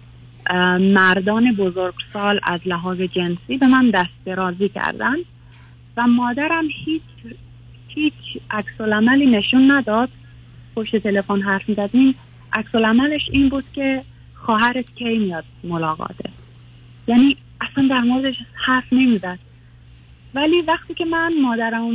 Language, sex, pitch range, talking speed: Persian, female, 175-240 Hz, 115 wpm